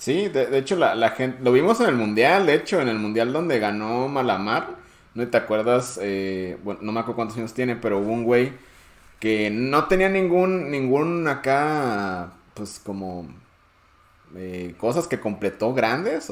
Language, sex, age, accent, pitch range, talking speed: Spanish, male, 30-49, Mexican, 100-130 Hz, 175 wpm